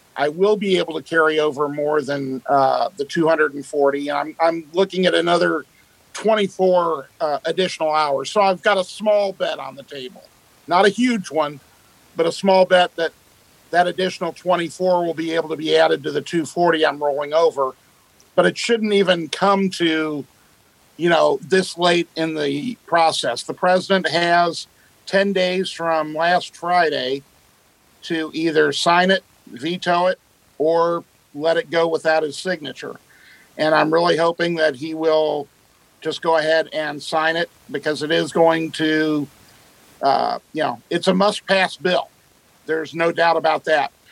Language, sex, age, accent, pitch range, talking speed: English, male, 50-69, American, 155-180 Hz, 160 wpm